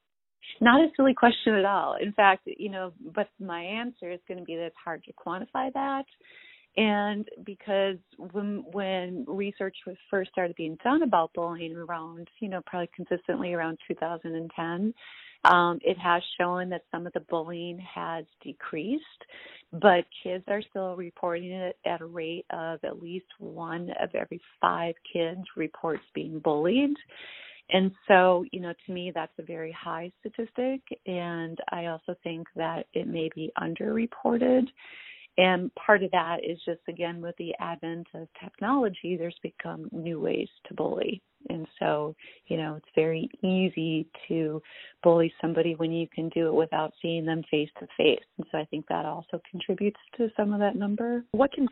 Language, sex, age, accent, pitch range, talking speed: English, female, 30-49, American, 165-210 Hz, 165 wpm